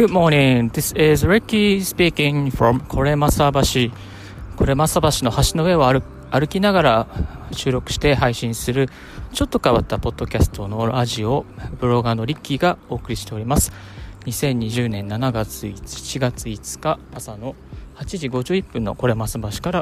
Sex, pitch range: male, 110-135 Hz